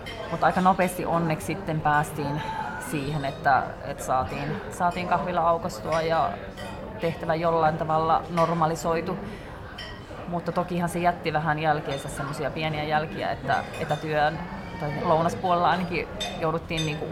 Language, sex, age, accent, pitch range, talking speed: Finnish, female, 30-49, native, 150-175 Hz, 120 wpm